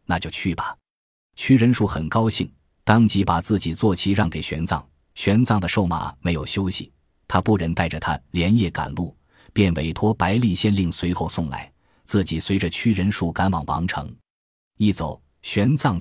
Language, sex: Chinese, male